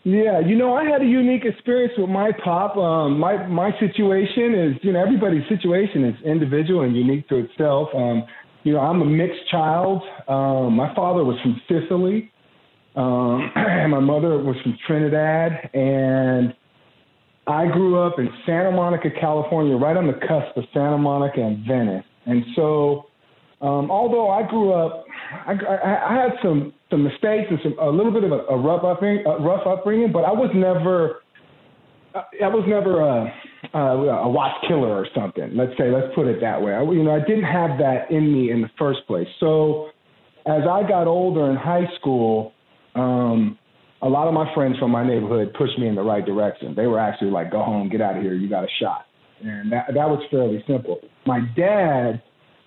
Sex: male